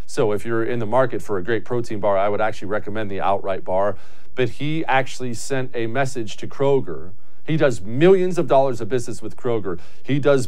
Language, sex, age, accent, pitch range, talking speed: English, male, 40-59, American, 90-135 Hz, 210 wpm